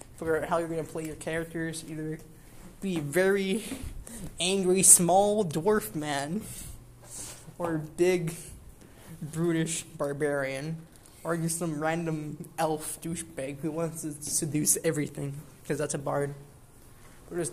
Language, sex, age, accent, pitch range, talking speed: English, male, 20-39, American, 150-175 Hz, 130 wpm